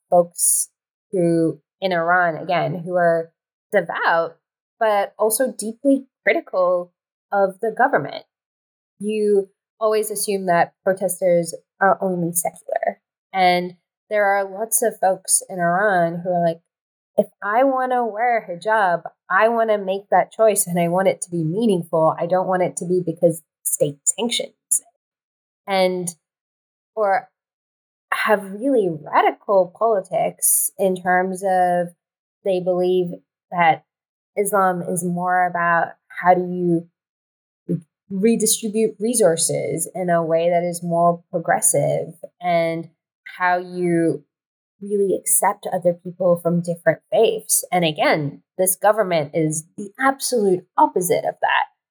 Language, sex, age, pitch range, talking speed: English, female, 20-39, 170-215 Hz, 130 wpm